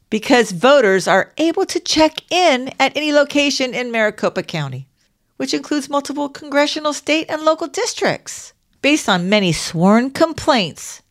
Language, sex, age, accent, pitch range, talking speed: English, female, 50-69, American, 170-245 Hz, 140 wpm